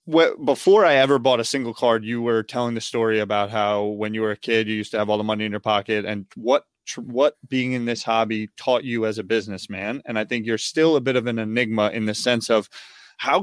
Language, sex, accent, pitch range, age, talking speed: English, male, American, 115-150 Hz, 20-39, 255 wpm